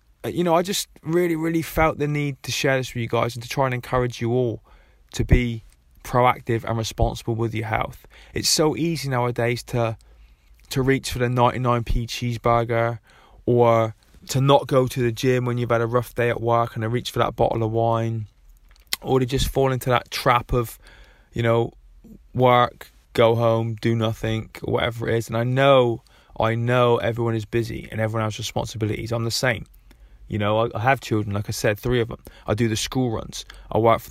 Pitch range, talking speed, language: 110-125 Hz, 210 wpm, English